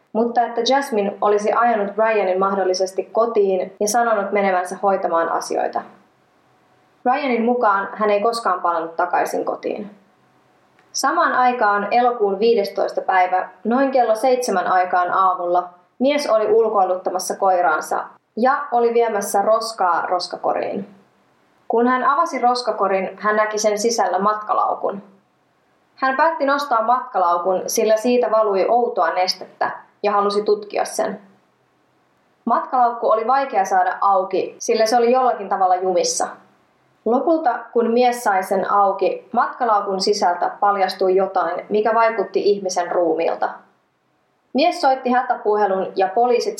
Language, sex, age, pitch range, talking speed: Finnish, female, 20-39, 190-245 Hz, 120 wpm